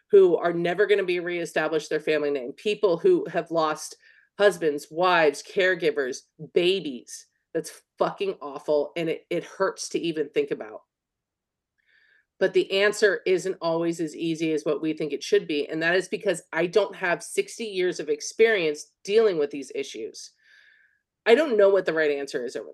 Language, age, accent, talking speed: English, 30-49, American, 175 wpm